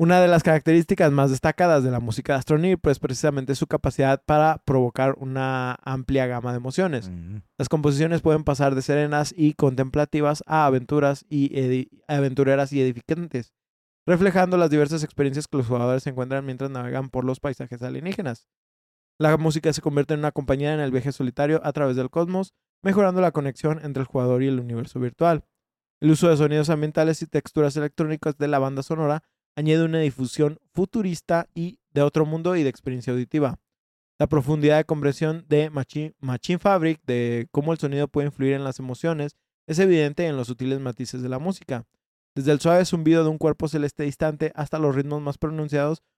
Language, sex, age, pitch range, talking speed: Spanish, male, 20-39, 130-160 Hz, 180 wpm